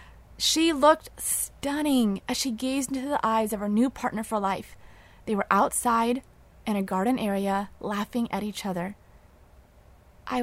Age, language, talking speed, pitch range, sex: 20-39, English, 155 wpm, 215-305 Hz, female